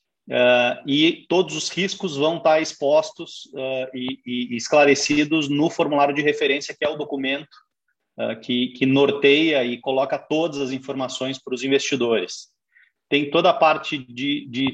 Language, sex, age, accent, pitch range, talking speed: Portuguese, male, 30-49, Brazilian, 130-160 Hz, 155 wpm